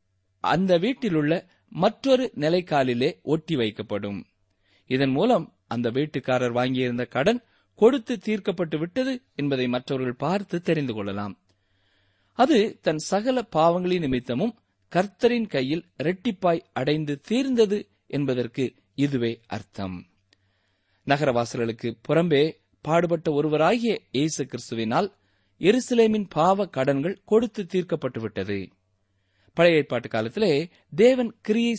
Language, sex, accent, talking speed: Tamil, male, native, 95 wpm